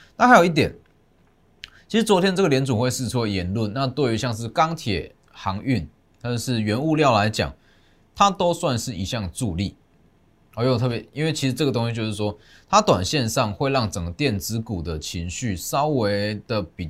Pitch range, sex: 95-130 Hz, male